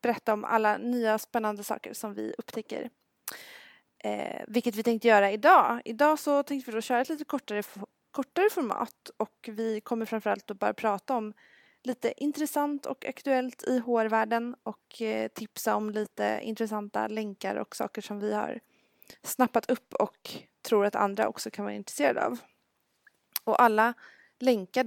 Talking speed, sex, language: 155 wpm, female, Swedish